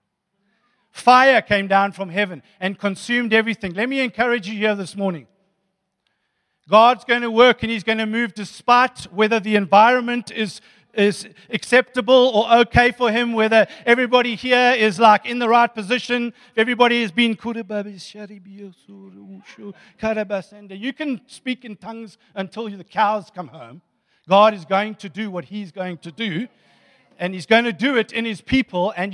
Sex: male